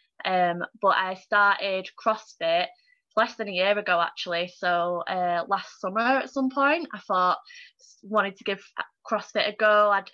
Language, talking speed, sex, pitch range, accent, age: English, 160 wpm, female, 185-225 Hz, British, 20-39